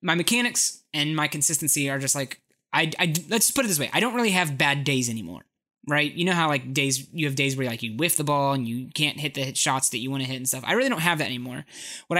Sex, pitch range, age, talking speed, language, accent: male, 135-170 Hz, 20-39, 280 wpm, English, American